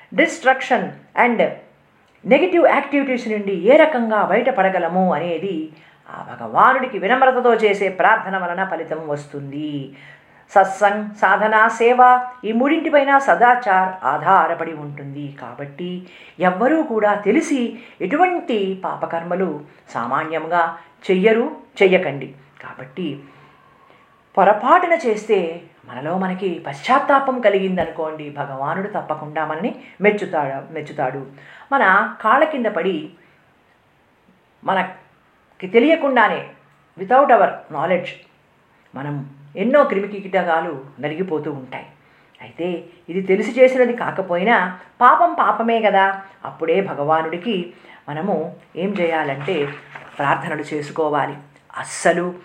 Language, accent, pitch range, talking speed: Telugu, native, 160-230 Hz, 90 wpm